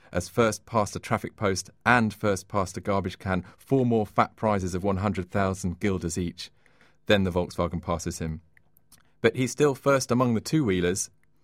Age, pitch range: 40-59, 95-110 Hz